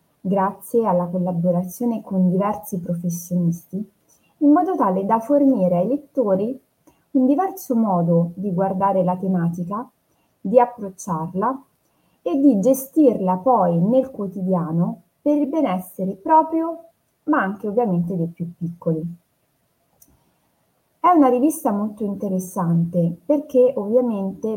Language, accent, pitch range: Italian, native, 180-250 Hz